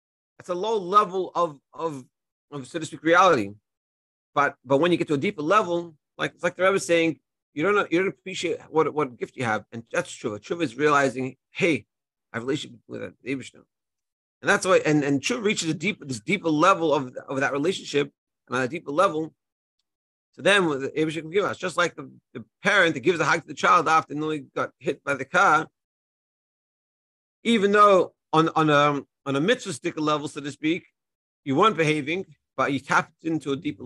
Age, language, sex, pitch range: 40-59, English, male, 130-170 Hz